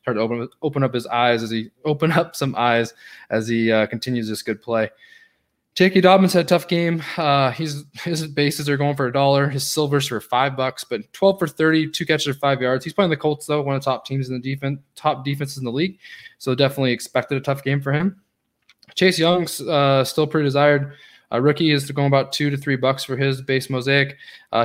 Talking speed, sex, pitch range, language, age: 235 wpm, male, 125-155 Hz, English, 20-39